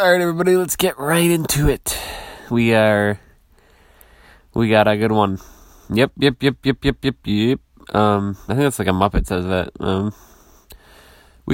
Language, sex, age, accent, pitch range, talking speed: English, male, 20-39, American, 95-115 Hz, 165 wpm